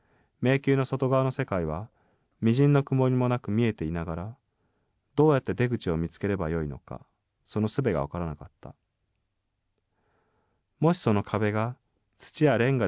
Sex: male